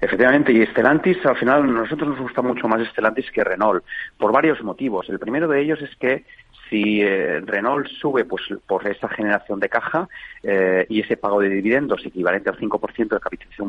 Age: 40-59